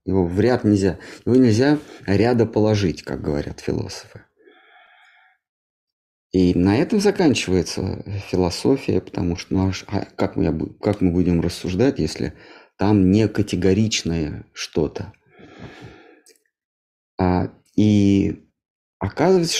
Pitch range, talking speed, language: 90-120 Hz, 100 wpm, Russian